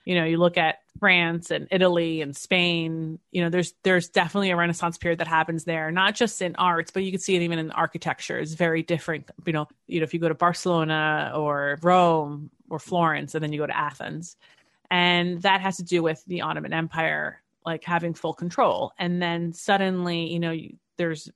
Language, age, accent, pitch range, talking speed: English, 30-49, American, 165-195 Hz, 210 wpm